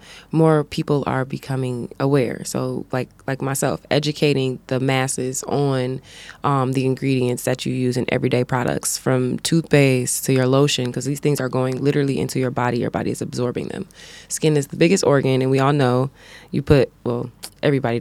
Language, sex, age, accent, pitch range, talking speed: English, female, 20-39, American, 130-155 Hz, 180 wpm